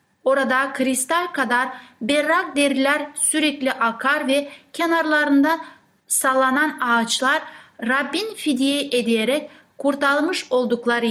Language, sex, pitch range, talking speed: Turkish, female, 235-290 Hz, 85 wpm